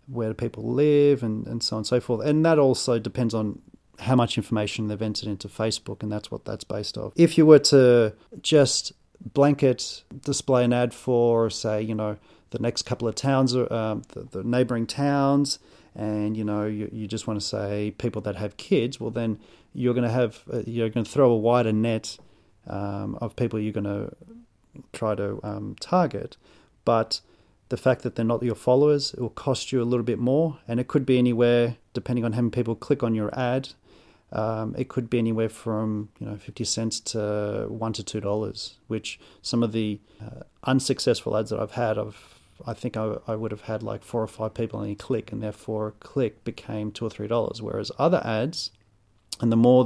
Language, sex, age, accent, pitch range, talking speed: English, male, 40-59, Australian, 105-125 Hz, 210 wpm